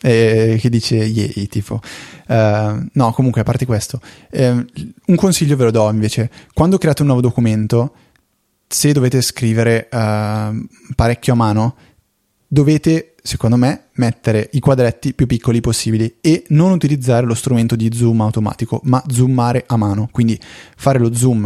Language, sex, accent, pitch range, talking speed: Italian, male, native, 110-130 Hz, 150 wpm